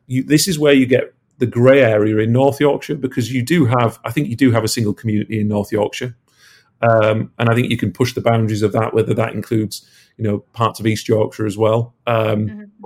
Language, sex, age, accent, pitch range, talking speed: English, male, 40-59, British, 110-130 Hz, 235 wpm